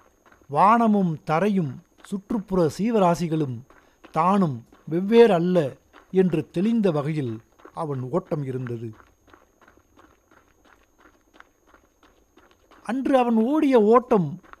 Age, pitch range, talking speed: 60-79, 140-215 Hz, 65 wpm